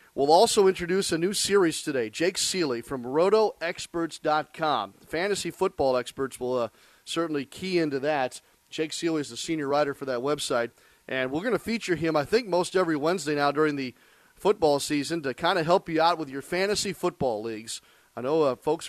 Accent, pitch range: American, 130-160 Hz